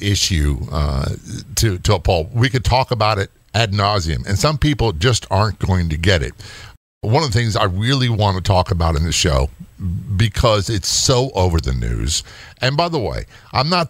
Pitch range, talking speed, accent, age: 90-125 Hz, 205 wpm, American, 50-69